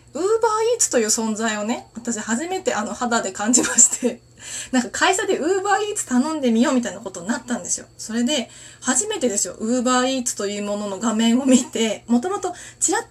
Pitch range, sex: 220-305 Hz, female